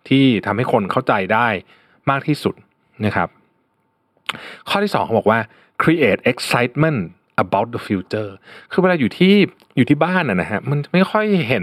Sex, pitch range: male, 110-175 Hz